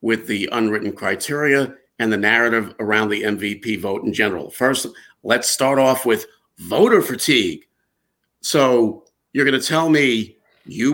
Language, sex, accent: English, male, American